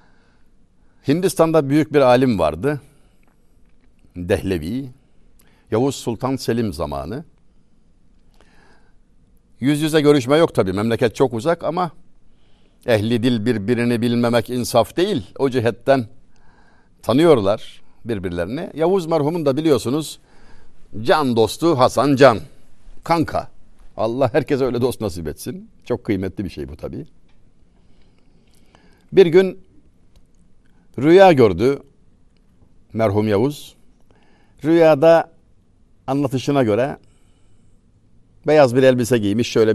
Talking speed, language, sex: 95 wpm, Turkish, male